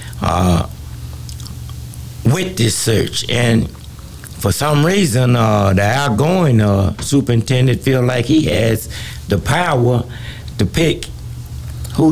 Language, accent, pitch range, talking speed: English, American, 105-135 Hz, 110 wpm